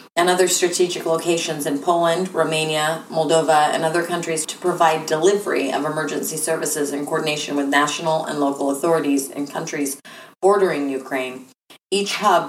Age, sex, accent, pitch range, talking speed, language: 30-49, female, American, 150-175 Hz, 145 wpm, English